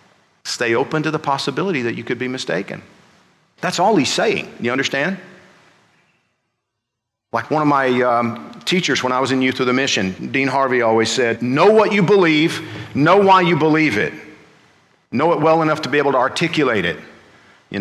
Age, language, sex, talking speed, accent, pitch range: 50-69, English, male, 180 wpm, American, 120-160 Hz